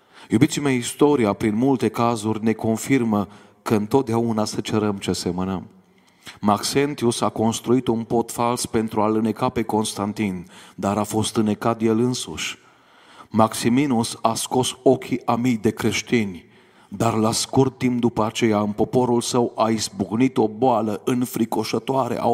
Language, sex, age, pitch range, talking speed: Romanian, male, 40-59, 105-120 Hz, 145 wpm